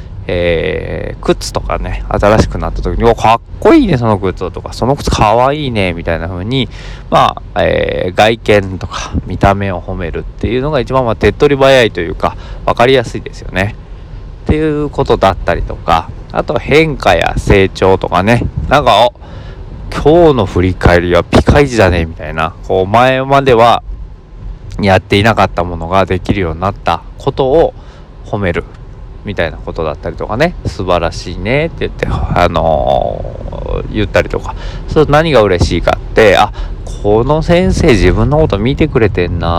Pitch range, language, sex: 85-115 Hz, Japanese, male